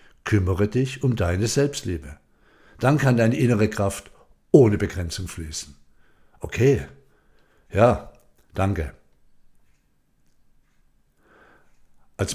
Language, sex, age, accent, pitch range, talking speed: German, male, 60-79, German, 90-130 Hz, 85 wpm